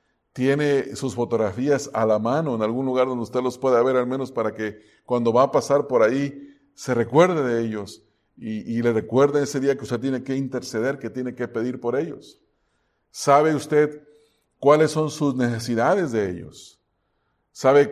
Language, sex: English, male